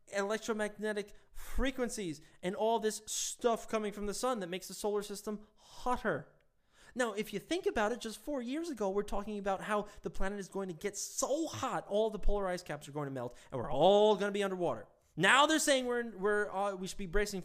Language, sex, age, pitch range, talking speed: English, male, 20-39, 155-210 Hz, 215 wpm